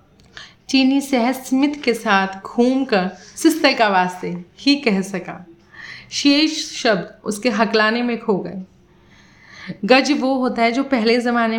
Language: Hindi